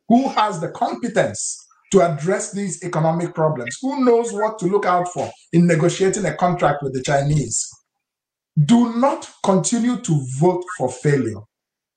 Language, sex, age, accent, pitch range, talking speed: English, male, 50-69, Nigerian, 175-245 Hz, 150 wpm